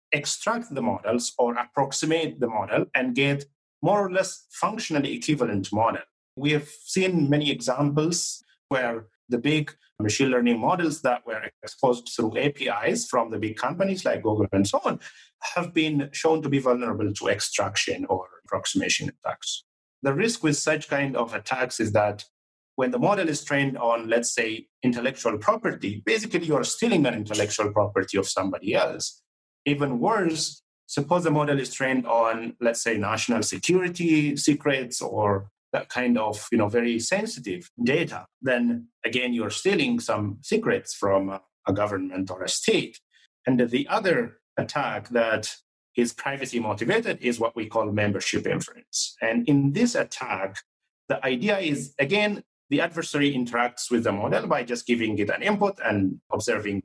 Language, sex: English, male